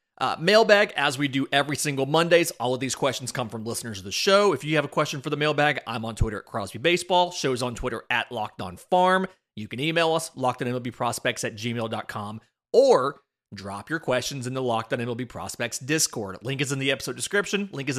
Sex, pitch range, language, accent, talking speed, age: male, 120-165 Hz, English, American, 215 wpm, 30-49